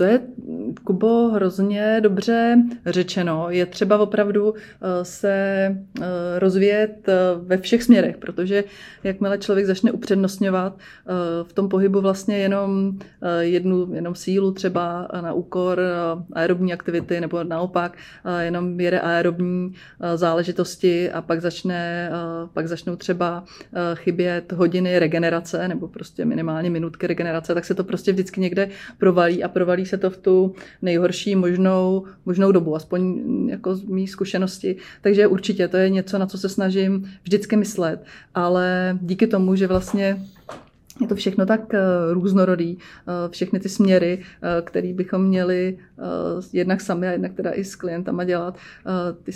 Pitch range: 175-195 Hz